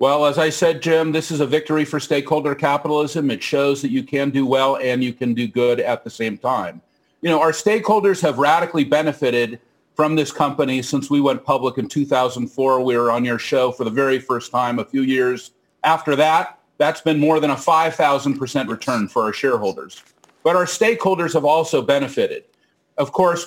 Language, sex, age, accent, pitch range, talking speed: English, male, 50-69, American, 130-160 Hz, 195 wpm